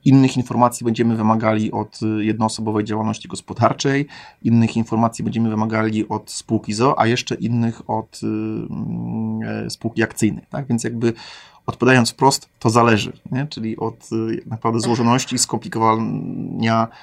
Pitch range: 110-125 Hz